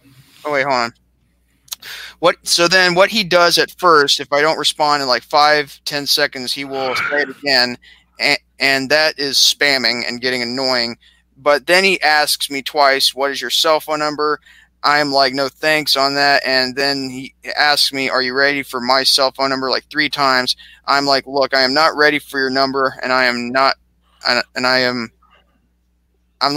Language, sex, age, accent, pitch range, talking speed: English, male, 20-39, American, 125-145 Hz, 200 wpm